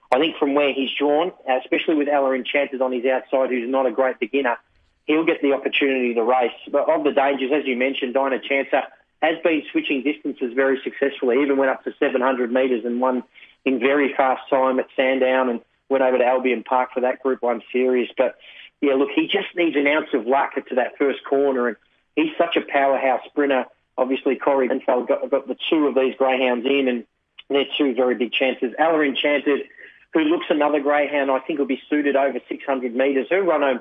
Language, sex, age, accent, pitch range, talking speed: English, male, 30-49, Australian, 125-145 Hz, 210 wpm